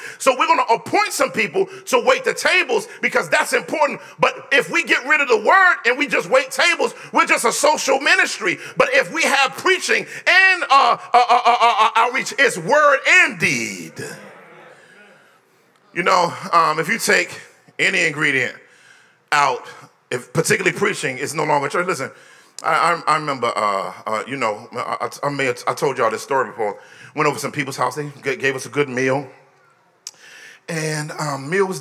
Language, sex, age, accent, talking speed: English, male, 40-59, American, 185 wpm